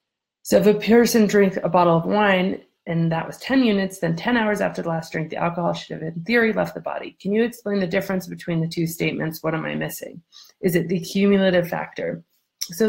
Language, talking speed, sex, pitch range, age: English, 230 wpm, female, 170-205 Hz, 30-49